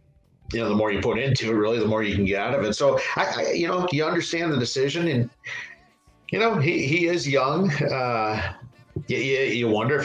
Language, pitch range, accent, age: English, 110-140 Hz, American, 50-69